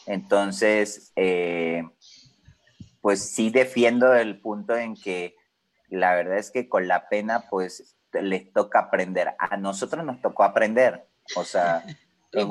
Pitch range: 95-125 Hz